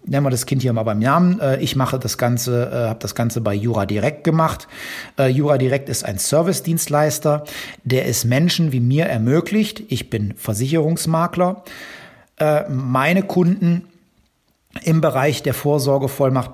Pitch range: 125-160 Hz